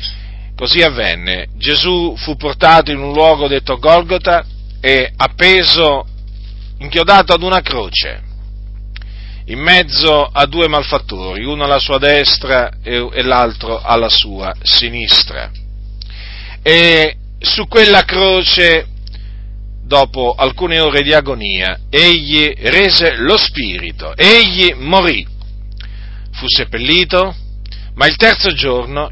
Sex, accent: male, native